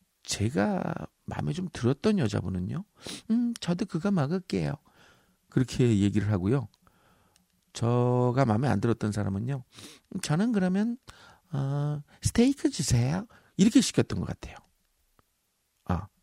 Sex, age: male, 50-69